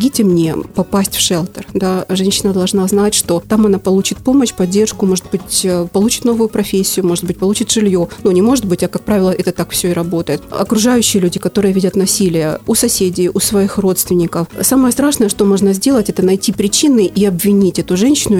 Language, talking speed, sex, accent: Ukrainian, 190 wpm, female, native